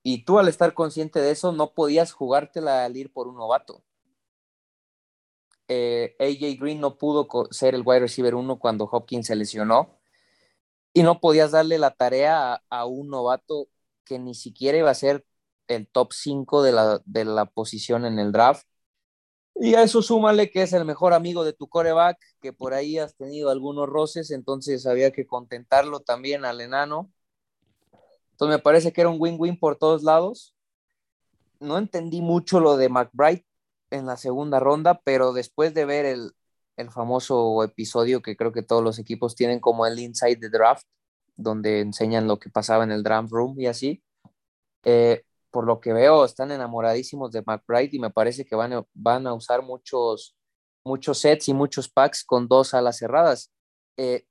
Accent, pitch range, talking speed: Mexican, 120-155 Hz, 180 wpm